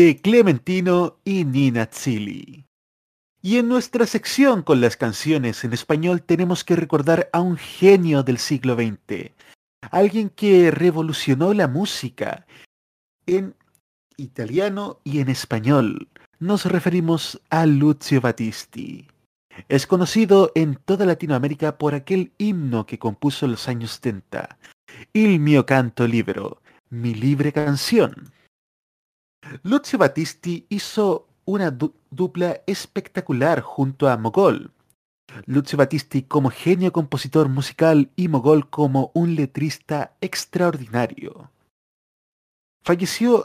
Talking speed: 110 wpm